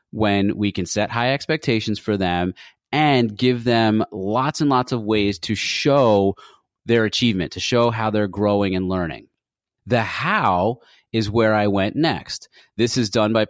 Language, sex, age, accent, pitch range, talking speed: English, male, 30-49, American, 95-125 Hz, 170 wpm